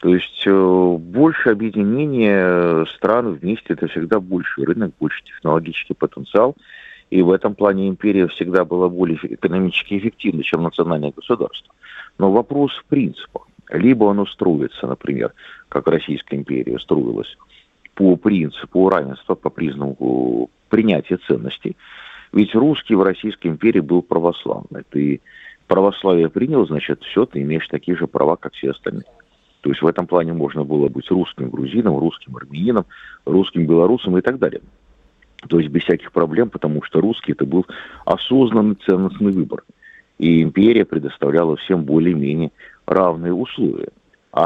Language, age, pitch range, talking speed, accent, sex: Russian, 40-59, 80-100 Hz, 140 wpm, native, male